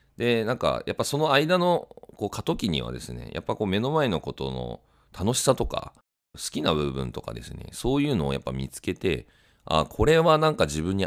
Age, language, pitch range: 40-59, Japanese, 65-105 Hz